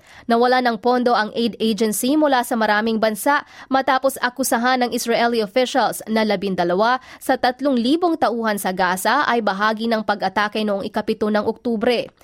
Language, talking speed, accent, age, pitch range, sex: Filipino, 150 wpm, native, 20-39, 210-255 Hz, female